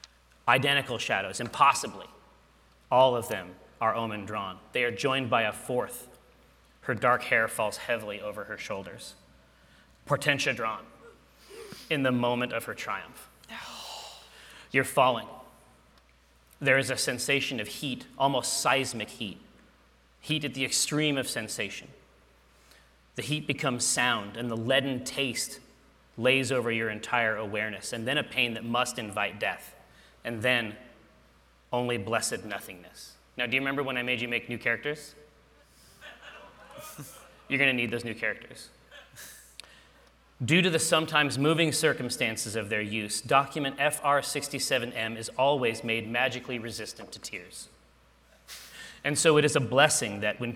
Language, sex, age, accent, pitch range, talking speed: English, male, 30-49, American, 110-140 Hz, 140 wpm